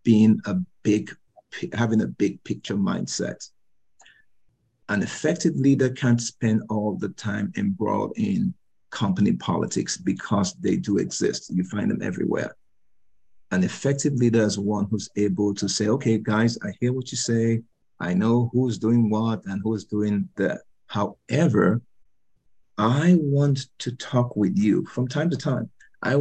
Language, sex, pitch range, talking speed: English, male, 105-135 Hz, 150 wpm